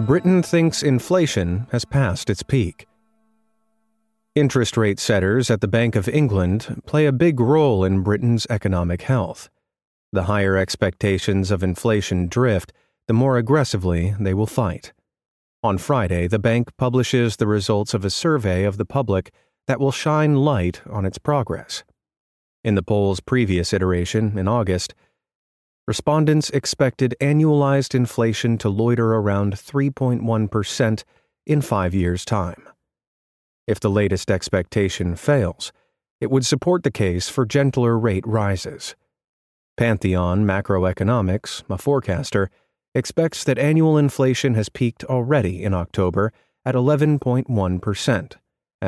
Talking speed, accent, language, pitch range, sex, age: 125 wpm, American, English, 95-135 Hz, male, 30-49